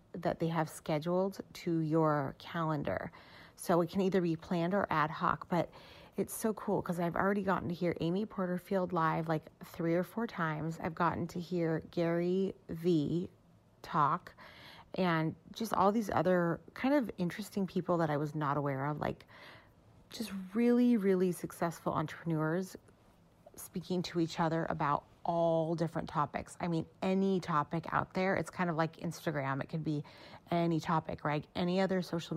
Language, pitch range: English, 160-185 Hz